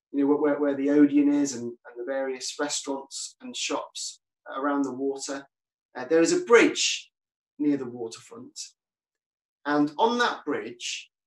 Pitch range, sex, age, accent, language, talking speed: 140-235 Hz, male, 30-49, British, English, 155 wpm